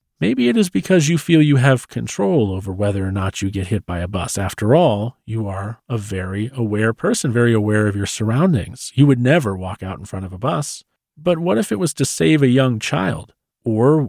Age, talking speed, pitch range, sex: 40-59, 225 wpm, 110-145 Hz, male